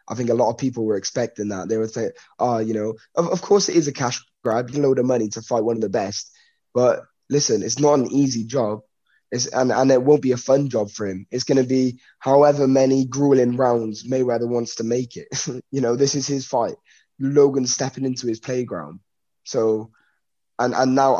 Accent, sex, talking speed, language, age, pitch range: British, male, 225 wpm, English, 10-29, 115-135 Hz